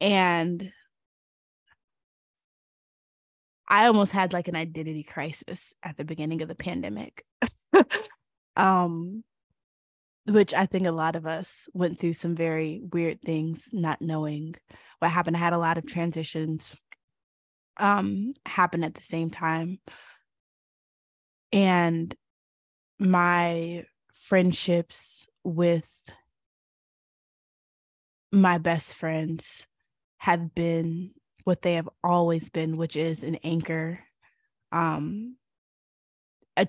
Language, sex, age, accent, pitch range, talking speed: English, female, 20-39, American, 160-180 Hz, 105 wpm